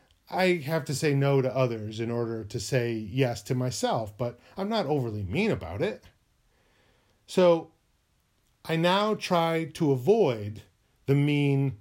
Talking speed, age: 145 wpm, 40-59